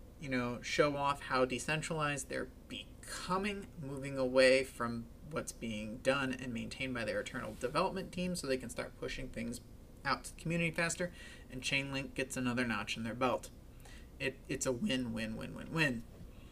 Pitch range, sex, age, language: 125-165 Hz, male, 30-49, English